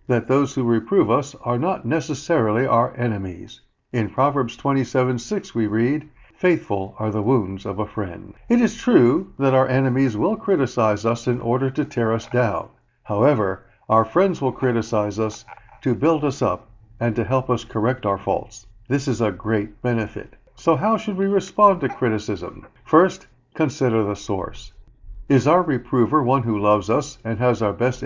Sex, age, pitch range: male, 60-79, 110-150 Hz